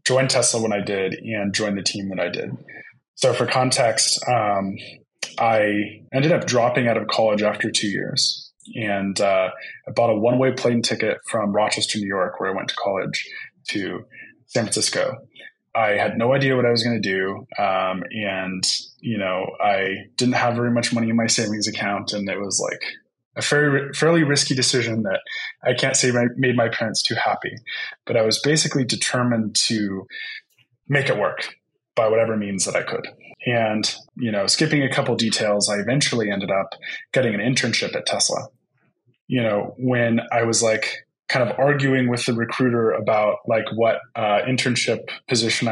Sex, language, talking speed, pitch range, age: male, English, 180 wpm, 105-125 Hz, 20-39